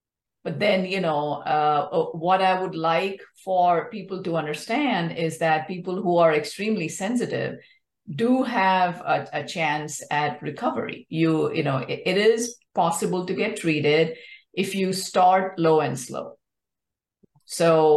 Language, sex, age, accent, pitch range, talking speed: English, female, 50-69, Indian, 155-210 Hz, 145 wpm